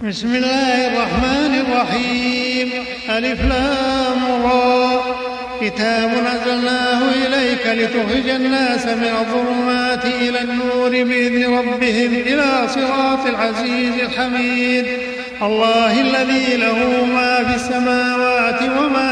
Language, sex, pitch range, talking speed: Arabic, male, 245-255 Hz, 90 wpm